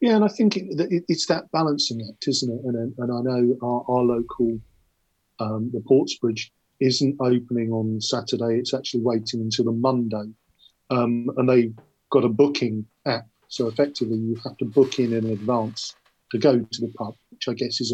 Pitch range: 115-140 Hz